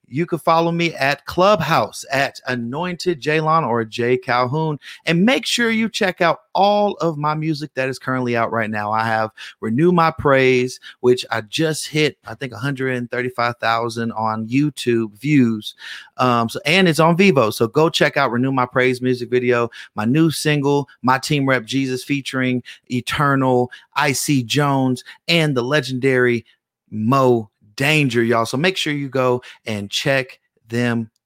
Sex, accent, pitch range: male, American, 120-160 Hz